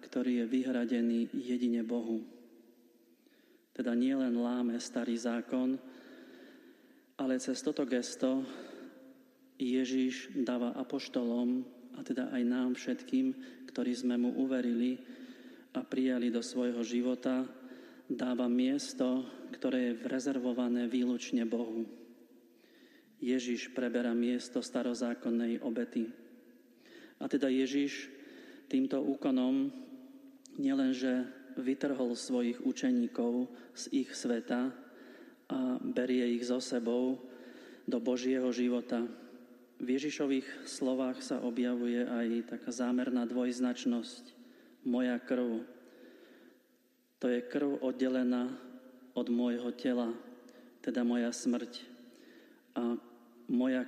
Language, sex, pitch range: Slovak, male, 120-150 Hz